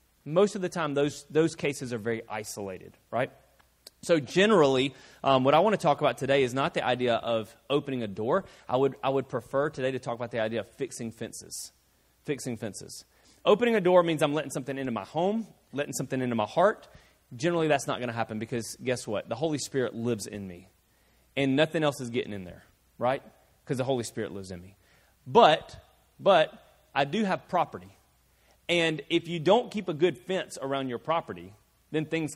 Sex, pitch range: male, 120-150 Hz